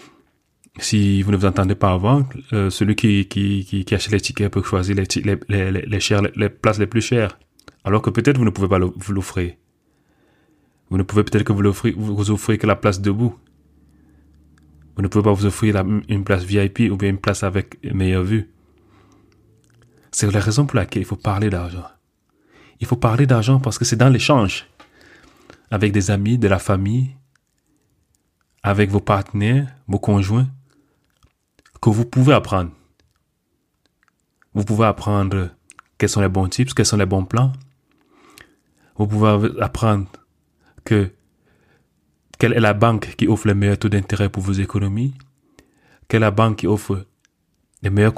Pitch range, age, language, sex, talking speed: 100-115 Hz, 30-49, French, male, 165 wpm